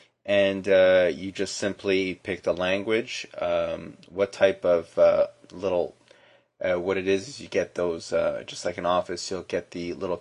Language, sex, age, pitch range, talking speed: English, male, 20-39, 90-110 Hz, 175 wpm